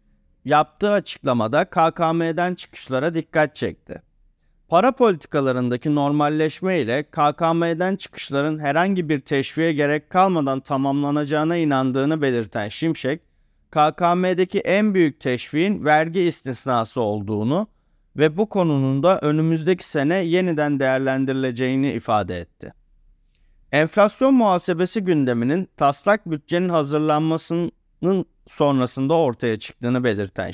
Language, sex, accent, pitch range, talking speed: Turkish, male, native, 135-175 Hz, 95 wpm